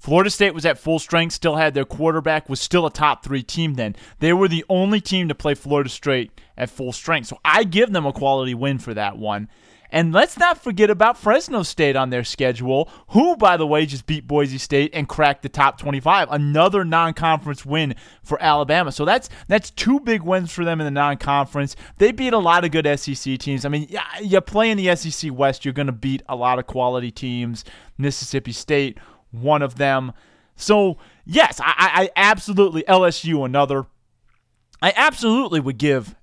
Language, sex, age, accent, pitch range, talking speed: English, male, 20-39, American, 130-170 Hz, 195 wpm